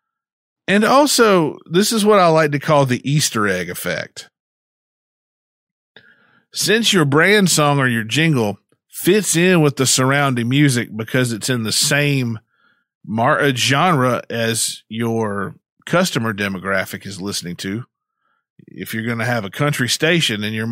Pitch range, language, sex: 115-165 Hz, English, male